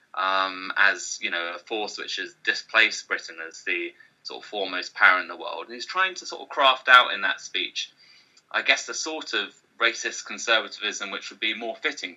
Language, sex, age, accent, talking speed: English, male, 20-39, British, 205 wpm